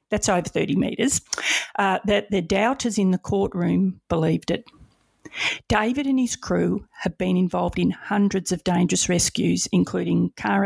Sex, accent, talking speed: female, Australian, 145 wpm